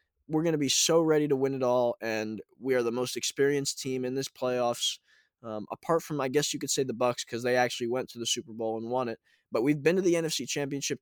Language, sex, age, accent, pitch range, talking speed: English, male, 20-39, American, 125-150 Hz, 260 wpm